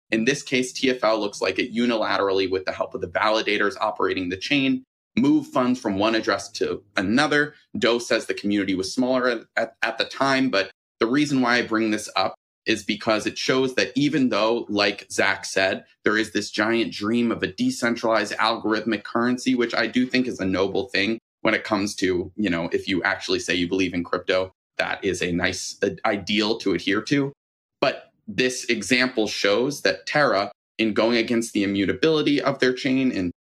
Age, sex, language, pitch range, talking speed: 30-49, male, English, 100-130 Hz, 190 wpm